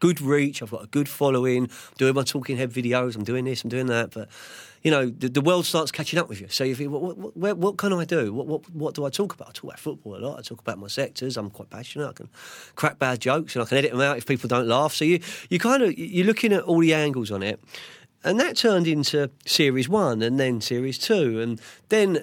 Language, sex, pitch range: English, male, 115-145 Hz